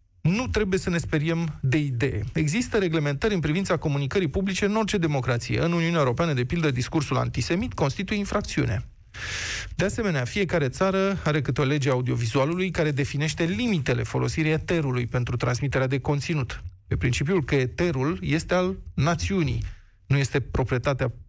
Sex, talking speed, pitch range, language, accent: male, 150 wpm, 125-175 Hz, Romanian, native